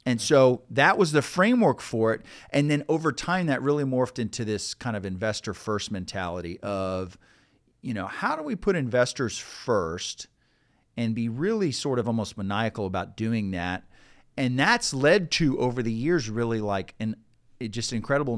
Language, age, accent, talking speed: English, 40-59, American, 175 wpm